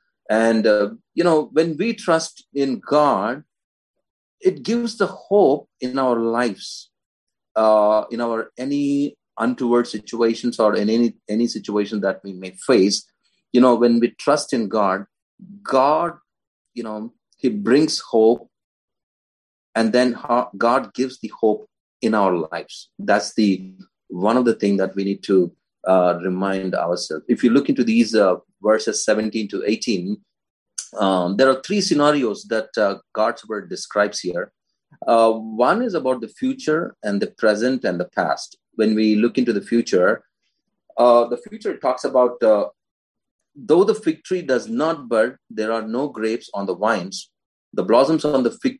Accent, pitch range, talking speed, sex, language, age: Indian, 105-140 Hz, 160 wpm, male, English, 30-49